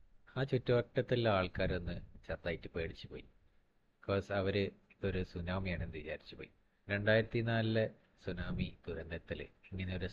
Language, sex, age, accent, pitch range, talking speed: Malayalam, male, 30-49, native, 85-110 Hz, 100 wpm